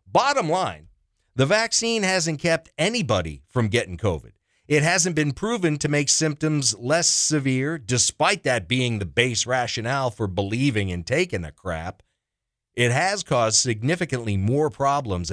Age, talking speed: 40-59, 145 wpm